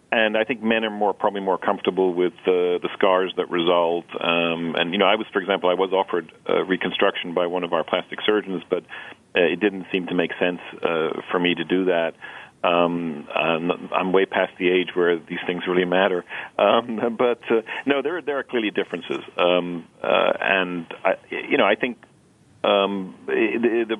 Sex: male